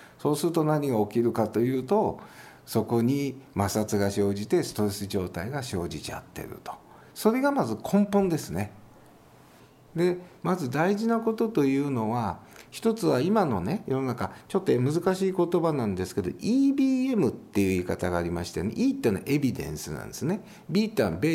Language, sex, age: Japanese, male, 50-69